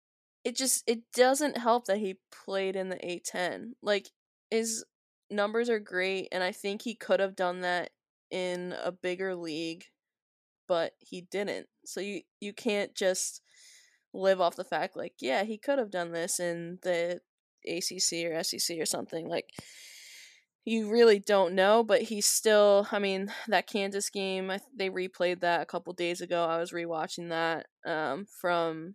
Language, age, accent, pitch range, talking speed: English, 10-29, American, 175-210 Hz, 165 wpm